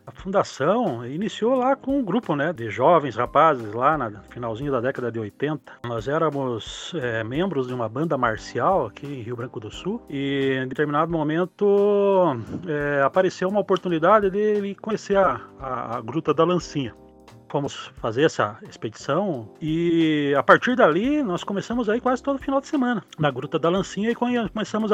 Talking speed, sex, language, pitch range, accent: 165 wpm, male, Portuguese, 130-190 Hz, Brazilian